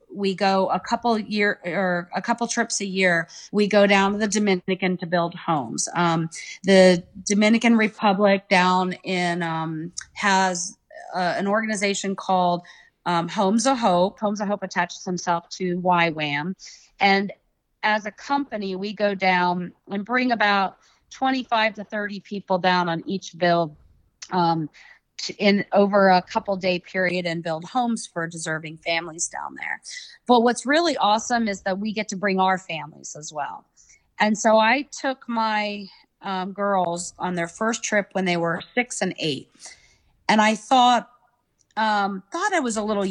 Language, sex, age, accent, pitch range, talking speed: English, female, 40-59, American, 180-215 Hz, 165 wpm